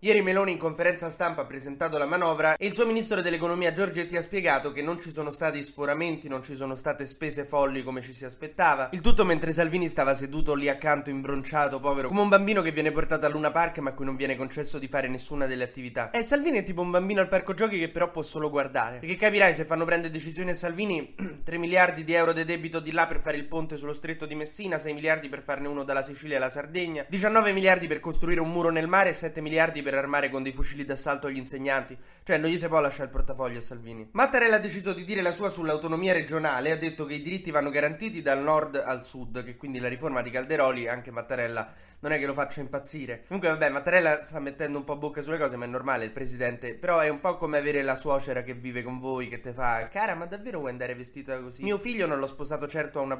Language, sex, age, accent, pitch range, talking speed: Italian, male, 20-39, native, 135-170 Hz, 245 wpm